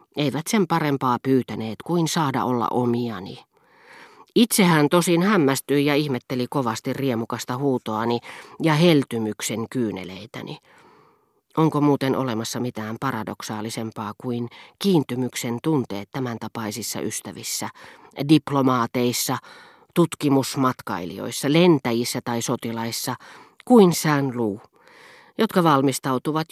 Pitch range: 125-160 Hz